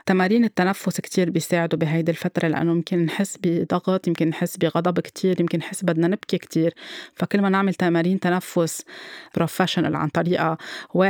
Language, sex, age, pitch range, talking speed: Arabic, female, 20-39, 165-185 Hz, 150 wpm